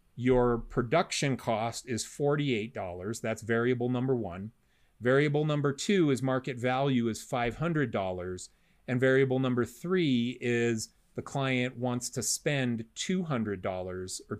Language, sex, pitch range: English, male, 115-155 Hz